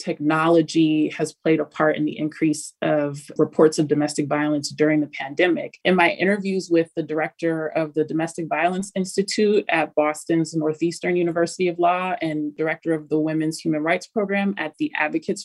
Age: 30-49